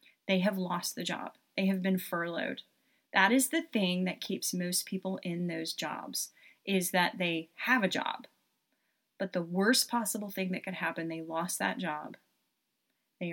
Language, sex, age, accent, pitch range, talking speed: English, female, 30-49, American, 170-215 Hz, 175 wpm